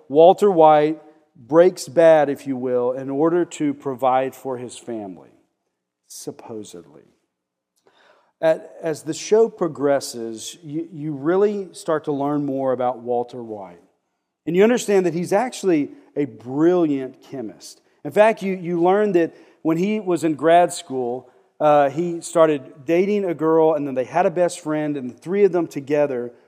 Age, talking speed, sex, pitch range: 40-59, 150 wpm, male, 135-175 Hz